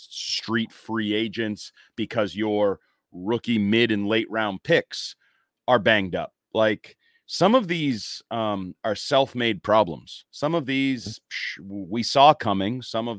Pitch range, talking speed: 115-170 Hz, 135 wpm